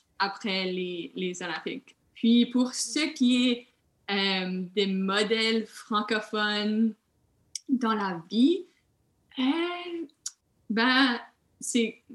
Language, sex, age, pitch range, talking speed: French, female, 20-39, 190-225 Hz, 95 wpm